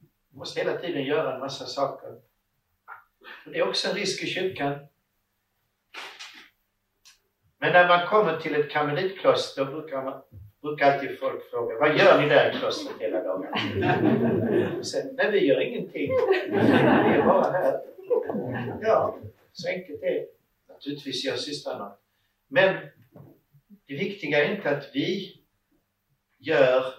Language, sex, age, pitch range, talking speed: Swedish, male, 60-79, 110-185 Hz, 125 wpm